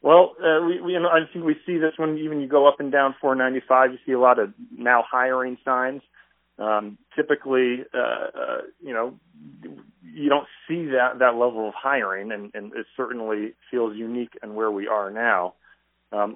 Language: English